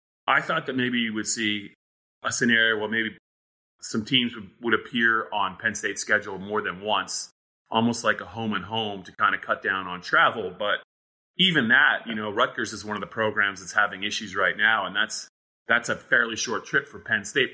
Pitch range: 95-115 Hz